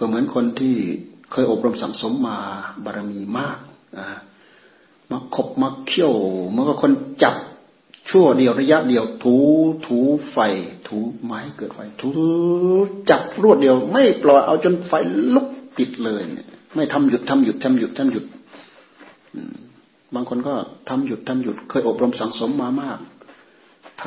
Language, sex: Thai, male